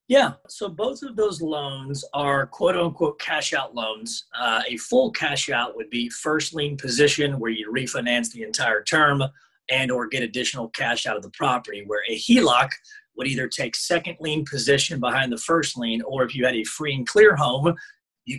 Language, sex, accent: English, male, American